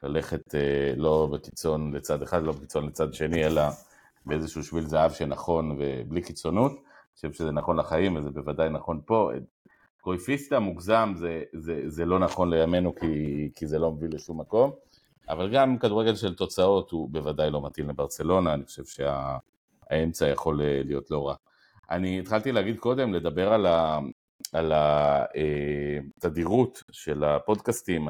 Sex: male